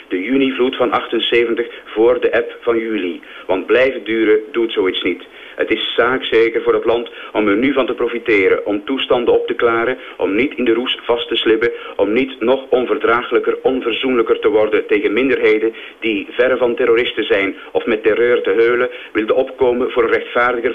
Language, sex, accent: Dutch, male, Dutch